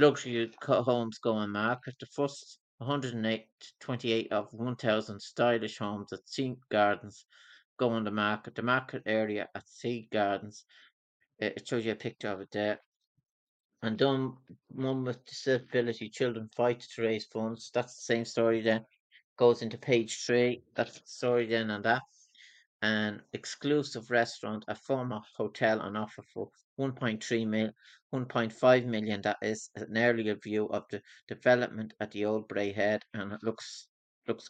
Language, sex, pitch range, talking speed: English, male, 105-120 Hz, 150 wpm